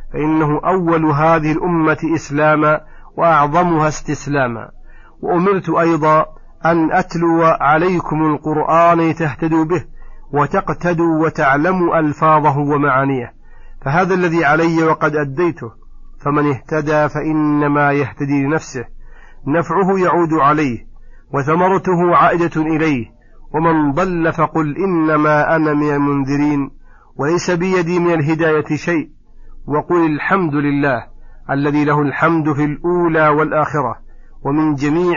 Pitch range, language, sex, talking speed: 145-165 Hz, Arabic, male, 100 wpm